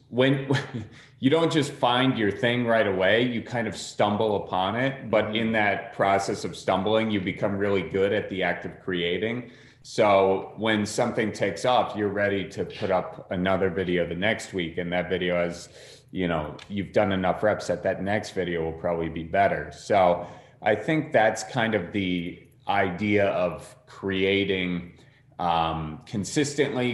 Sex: male